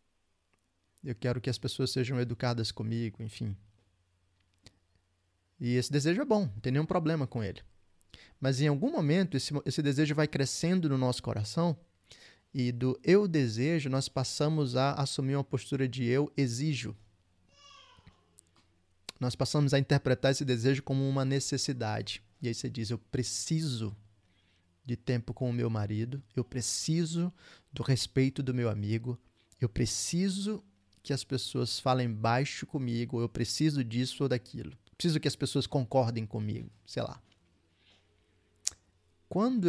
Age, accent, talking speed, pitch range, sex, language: 20-39, Brazilian, 145 wpm, 110-140 Hz, male, Portuguese